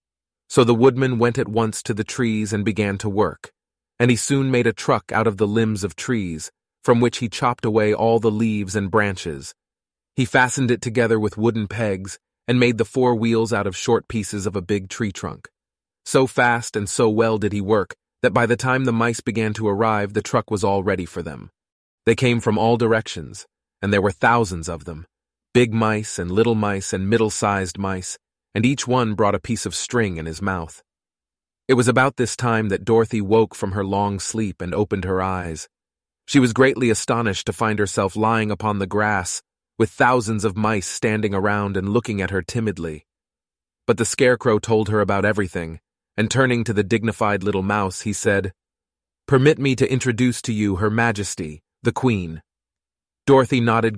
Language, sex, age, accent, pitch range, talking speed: Italian, male, 30-49, American, 100-120 Hz, 195 wpm